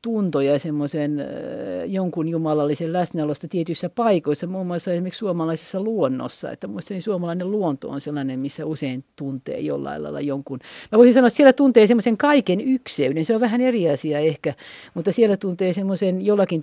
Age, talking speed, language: 50-69, 160 wpm, Finnish